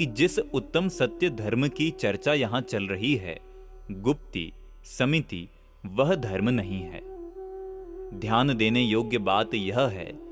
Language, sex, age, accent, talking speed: Hindi, male, 30-49, native, 135 wpm